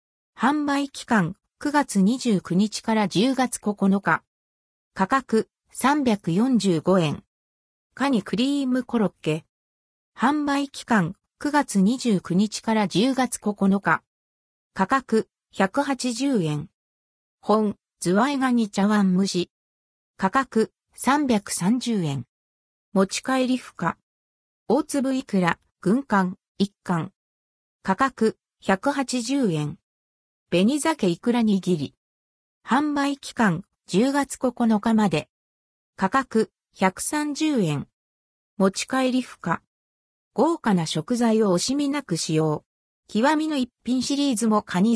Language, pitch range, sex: Japanese, 165-255 Hz, female